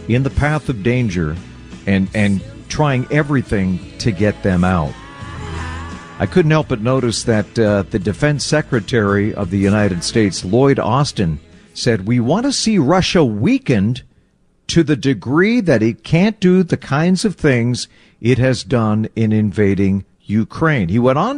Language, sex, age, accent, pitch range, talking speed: English, male, 50-69, American, 100-150 Hz, 155 wpm